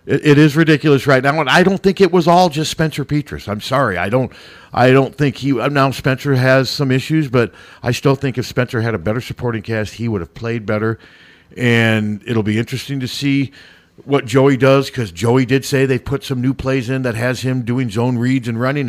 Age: 50-69